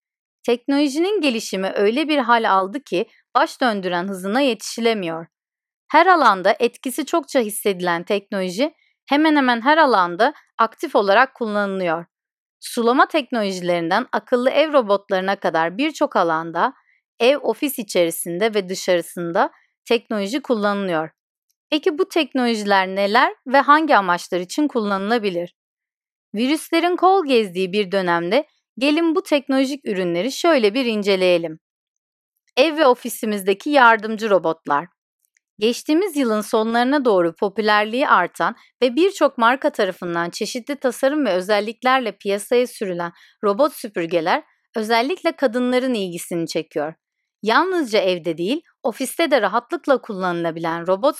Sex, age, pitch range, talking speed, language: female, 40-59, 190-280 Hz, 110 wpm, Turkish